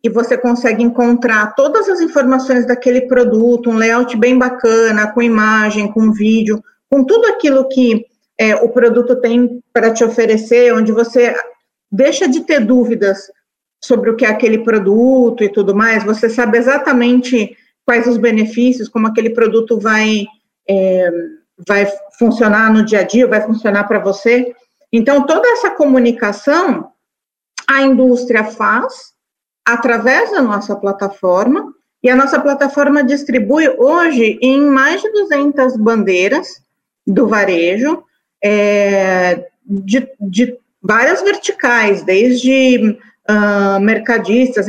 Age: 40-59